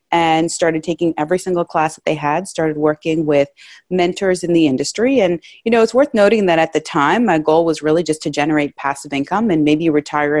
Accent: American